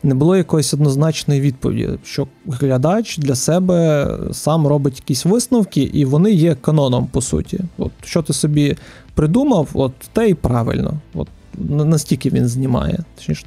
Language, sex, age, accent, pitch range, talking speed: Ukrainian, male, 20-39, native, 130-170 Hz, 145 wpm